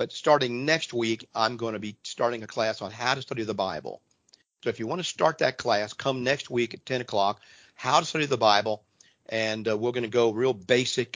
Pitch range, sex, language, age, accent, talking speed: 105-120 Hz, male, English, 50-69, American, 235 wpm